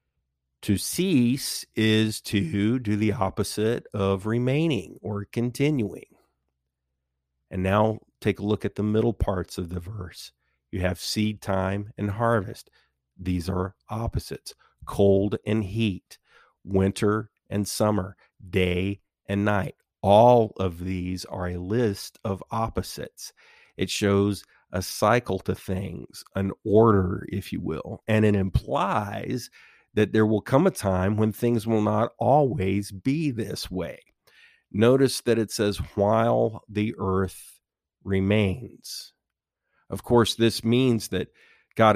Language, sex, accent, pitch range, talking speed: English, male, American, 95-110 Hz, 130 wpm